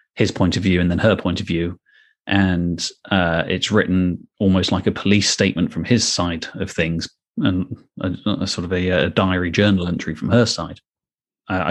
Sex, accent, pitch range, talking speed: male, British, 95-115 Hz, 195 wpm